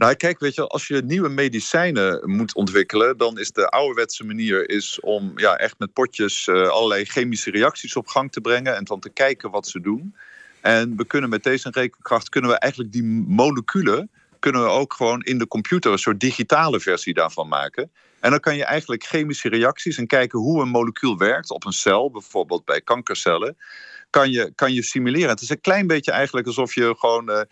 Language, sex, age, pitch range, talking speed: Dutch, male, 50-69, 110-150 Hz, 200 wpm